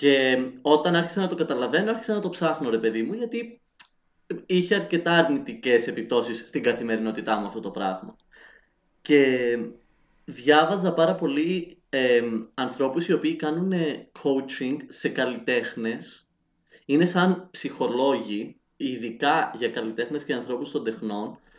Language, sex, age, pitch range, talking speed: Greek, male, 20-39, 120-170 Hz, 130 wpm